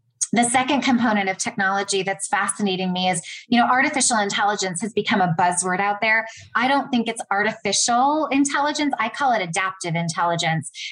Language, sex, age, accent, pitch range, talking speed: English, female, 20-39, American, 195-255 Hz, 165 wpm